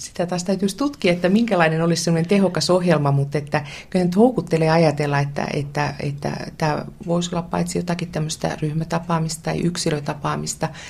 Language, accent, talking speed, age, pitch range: Finnish, native, 155 wpm, 30-49, 135-165 Hz